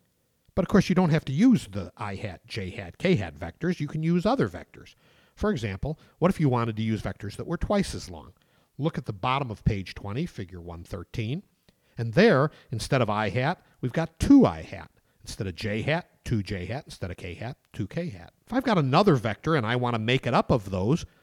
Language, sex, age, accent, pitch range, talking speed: English, male, 50-69, American, 100-160 Hz, 200 wpm